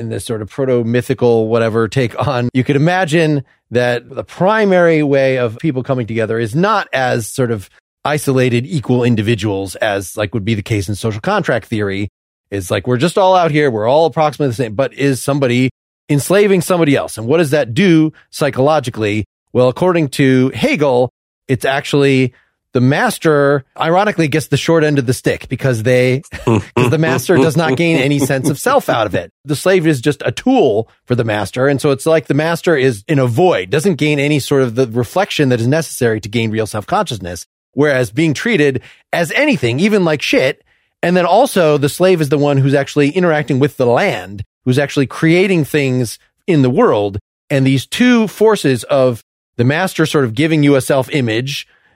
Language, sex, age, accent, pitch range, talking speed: English, male, 30-49, American, 120-155 Hz, 195 wpm